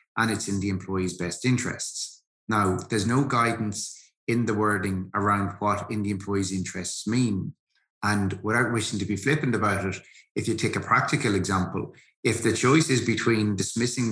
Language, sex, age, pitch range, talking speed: English, male, 30-49, 95-110 Hz, 175 wpm